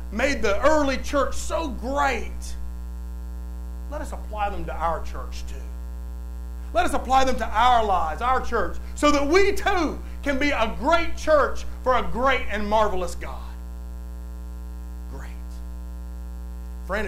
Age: 40-59